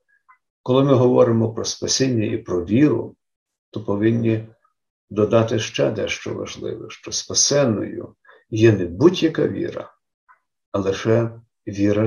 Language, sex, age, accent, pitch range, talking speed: Ukrainian, male, 50-69, native, 110-130 Hz, 115 wpm